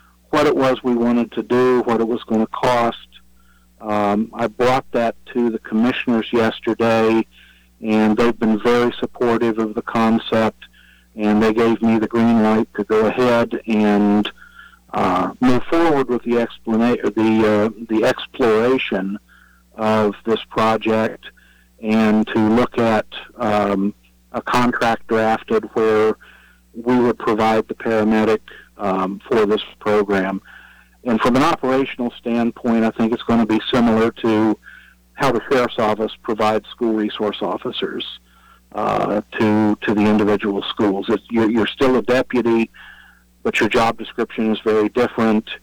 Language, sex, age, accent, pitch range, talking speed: English, male, 50-69, American, 105-115 Hz, 145 wpm